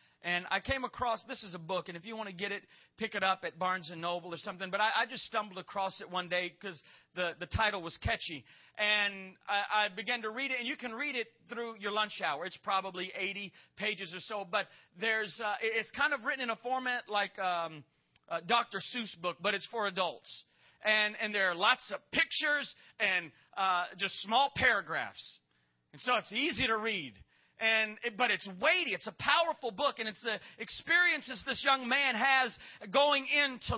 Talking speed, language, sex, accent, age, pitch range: 210 wpm, English, male, American, 40-59, 195-270 Hz